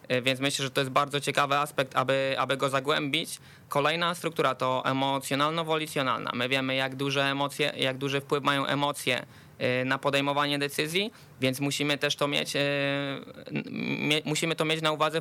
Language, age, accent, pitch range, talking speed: Polish, 20-39, native, 135-155 Hz, 155 wpm